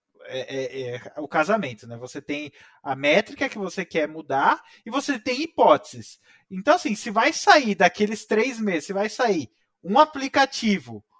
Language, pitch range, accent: Portuguese, 130-215 Hz, Brazilian